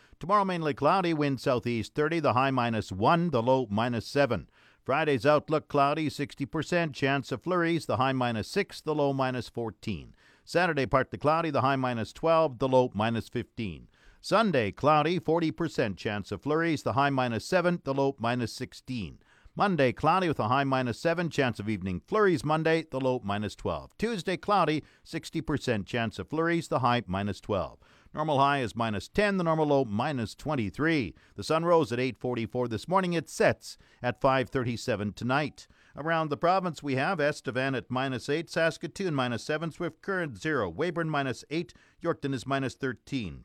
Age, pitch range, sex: 50-69, 125-160 Hz, male